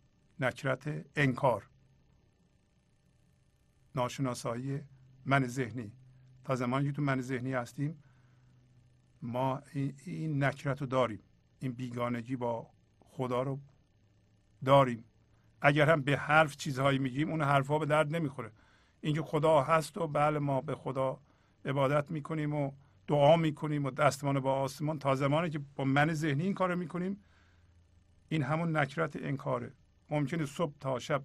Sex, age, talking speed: male, 50-69, 130 wpm